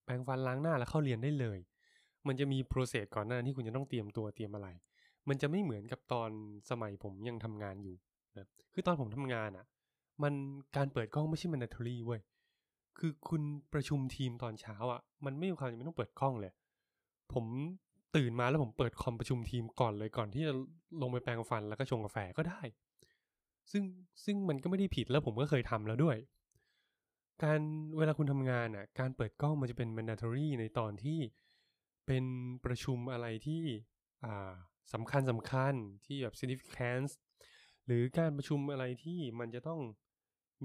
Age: 20-39